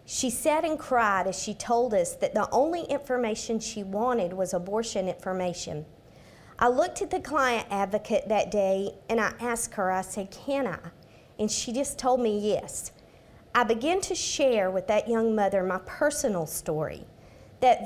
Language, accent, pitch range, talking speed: English, American, 195-270 Hz, 170 wpm